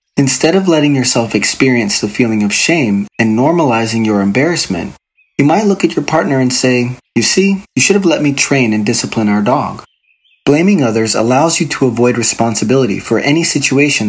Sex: male